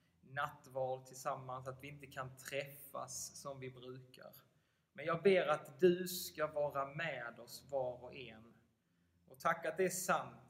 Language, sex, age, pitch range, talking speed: Swedish, male, 20-39, 120-150 Hz, 155 wpm